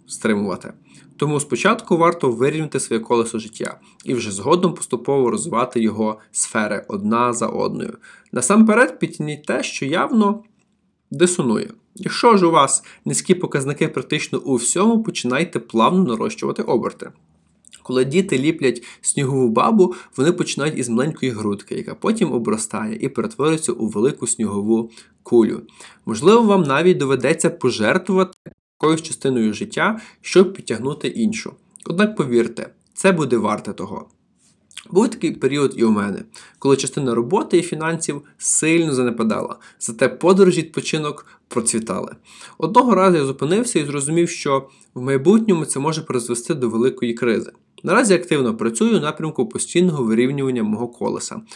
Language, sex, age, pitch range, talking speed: Ukrainian, male, 20-39, 120-185 Hz, 135 wpm